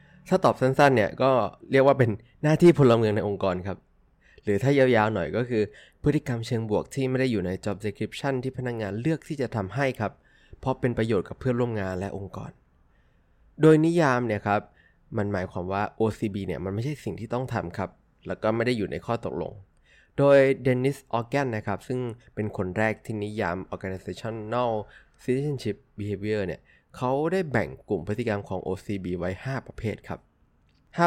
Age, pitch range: 20-39, 100-130 Hz